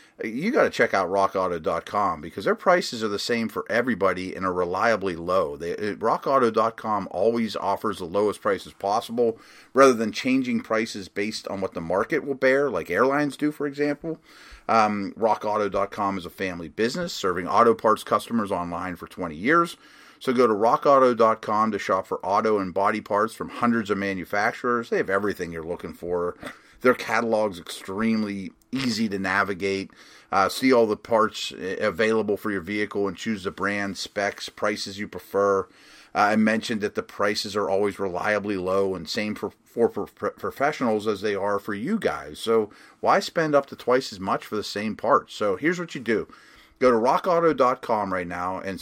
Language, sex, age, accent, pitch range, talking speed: English, male, 30-49, American, 100-130 Hz, 180 wpm